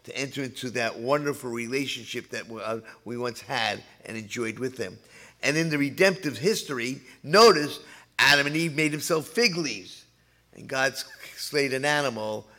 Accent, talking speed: American, 155 wpm